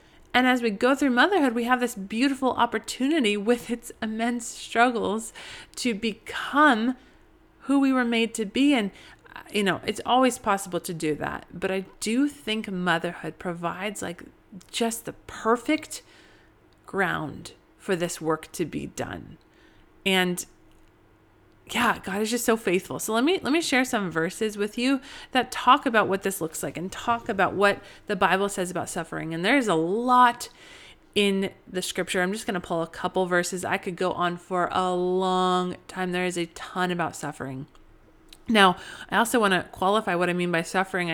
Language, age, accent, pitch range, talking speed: English, 30-49, American, 180-235 Hz, 180 wpm